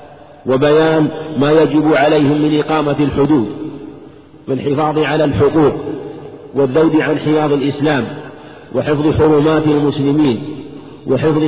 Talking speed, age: 100 wpm, 50-69